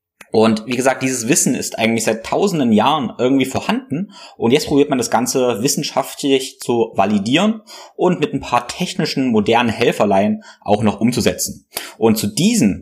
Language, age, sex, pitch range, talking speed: German, 20-39, male, 105-140 Hz, 160 wpm